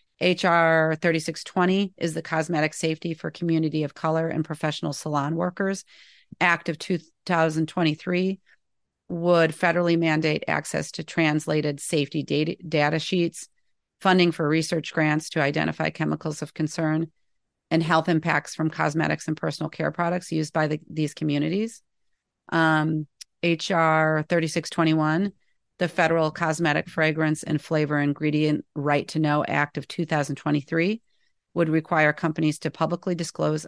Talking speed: 125 wpm